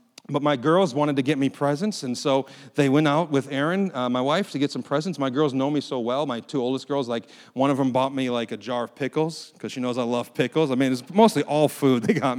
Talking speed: 275 wpm